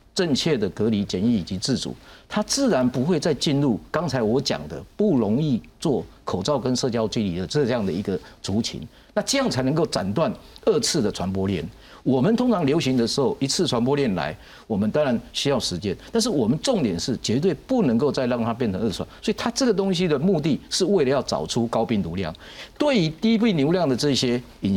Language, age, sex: Chinese, 50-69, male